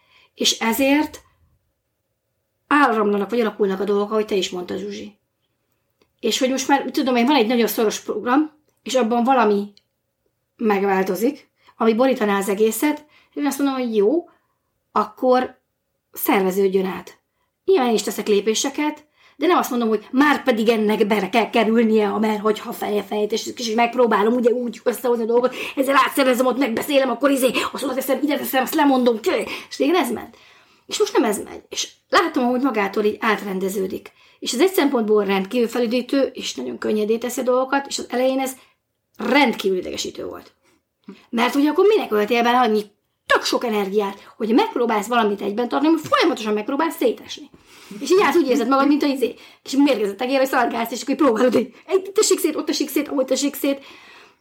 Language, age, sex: Hungarian, 30-49, female